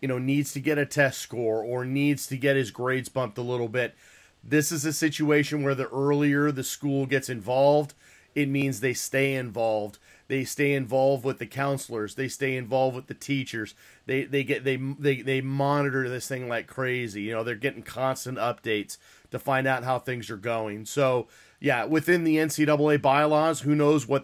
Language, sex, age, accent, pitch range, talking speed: English, male, 30-49, American, 125-150 Hz, 195 wpm